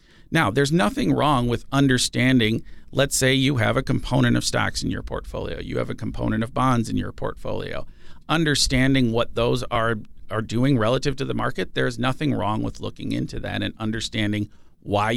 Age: 40-59